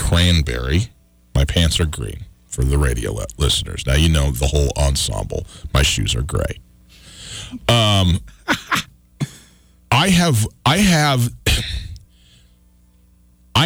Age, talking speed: 40-59, 105 wpm